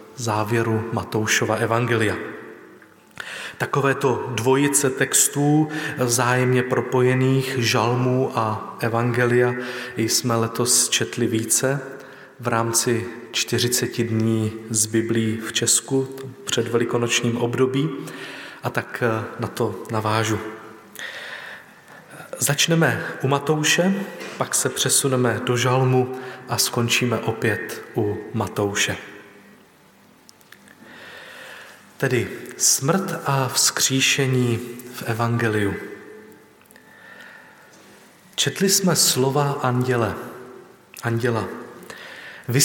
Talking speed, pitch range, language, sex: 80 wpm, 115-135 Hz, Slovak, male